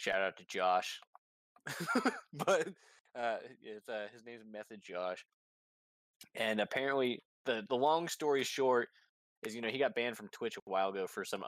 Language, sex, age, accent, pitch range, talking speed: English, male, 20-39, American, 95-120 Hz, 165 wpm